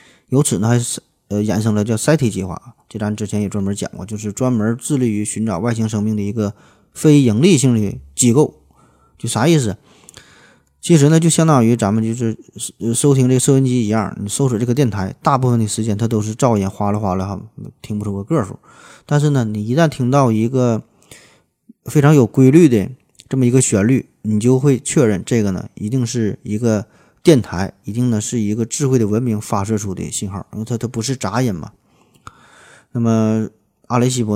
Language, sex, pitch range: Chinese, male, 105-125 Hz